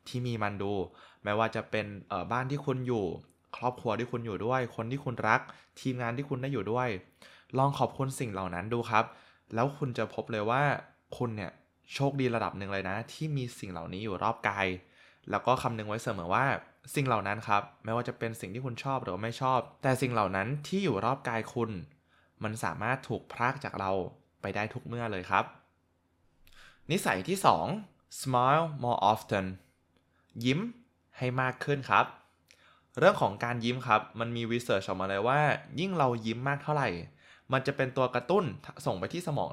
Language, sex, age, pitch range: Thai, male, 20-39, 100-130 Hz